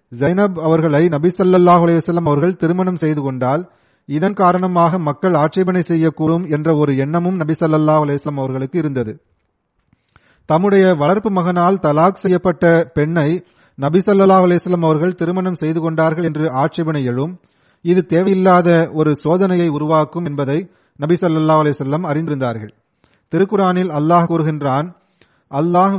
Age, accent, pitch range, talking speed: 30-49, native, 150-180 Hz, 110 wpm